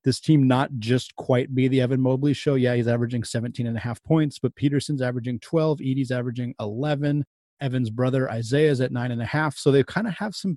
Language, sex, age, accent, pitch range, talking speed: English, male, 30-49, American, 120-145 Hz, 225 wpm